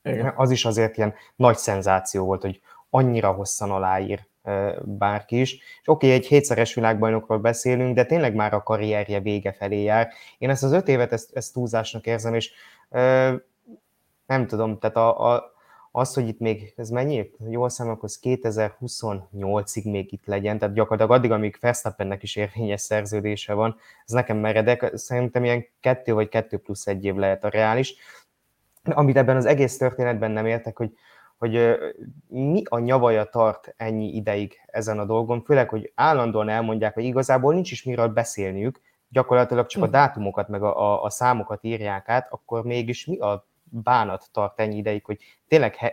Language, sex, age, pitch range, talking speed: Hungarian, male, 20-39, 105-125 Hz, 170 wpm